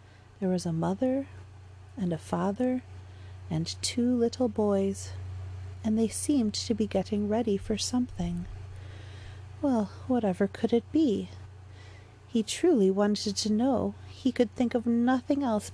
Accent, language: American, English